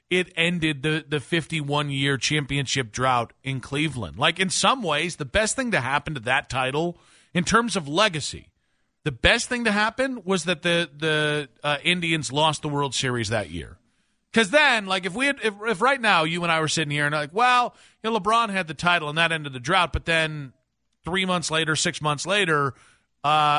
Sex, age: male, 40-59